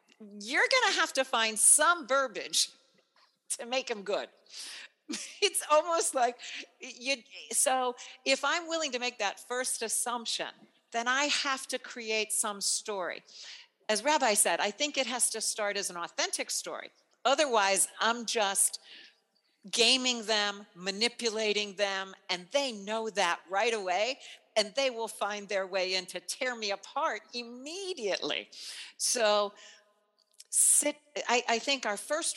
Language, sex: English, female